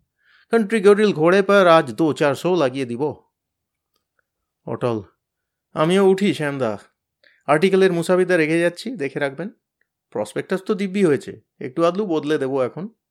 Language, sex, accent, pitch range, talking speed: Bengali, male, native, 115-165 Hz, 60 wpm